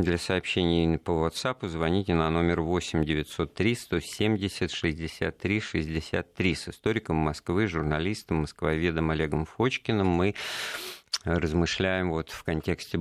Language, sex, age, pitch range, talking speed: Russian, male, 50-69, 75-95 Hz, 90 wpm